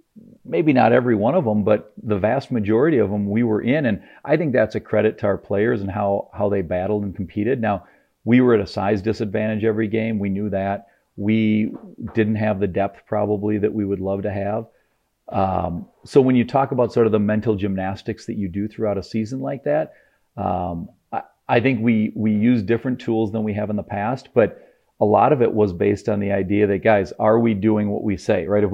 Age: 40-59